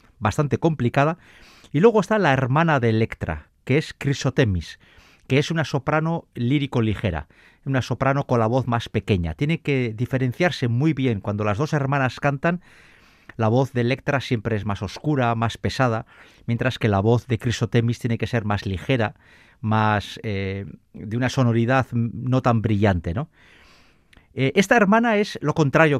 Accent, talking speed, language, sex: Spanish, 160 wpm, Spanish, male